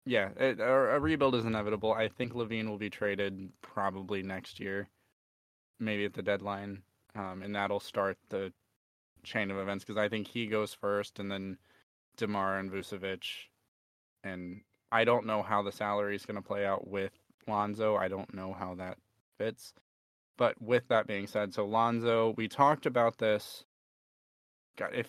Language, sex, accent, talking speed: English, male, American, 165 wpm